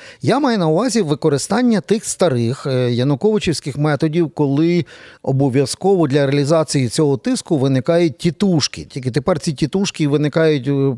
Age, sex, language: 40-59, male, Ukrainian